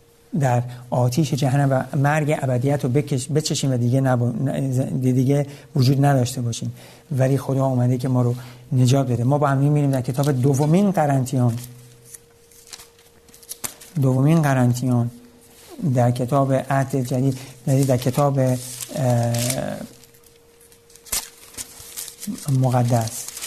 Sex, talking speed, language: male, 100 wpm, Persian